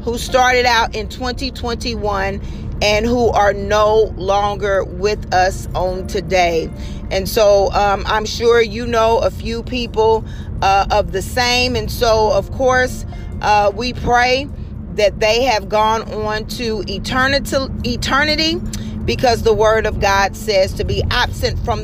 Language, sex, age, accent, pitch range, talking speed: English, female, 40-59, American, 200-230 Hz, 145 wpm